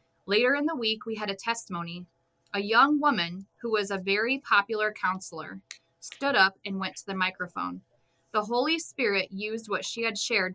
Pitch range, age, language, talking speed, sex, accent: 185-225 Hz, 20-39, English, 180 wpm, female, American